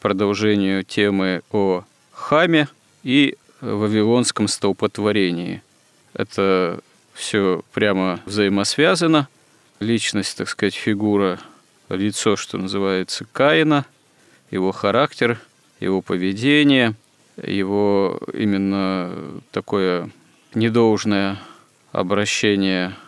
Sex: male